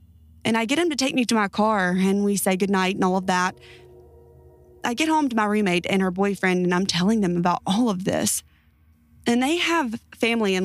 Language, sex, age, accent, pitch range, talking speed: English, female, 20-39, American, 175-225 Hz, 225 wpm